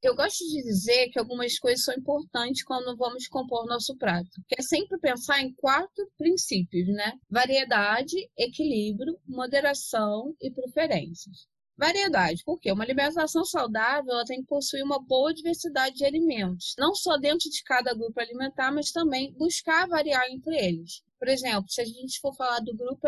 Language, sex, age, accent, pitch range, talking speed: Portuguese, female, 20-39, Brazilian, 230-290 Hz, 165 wpm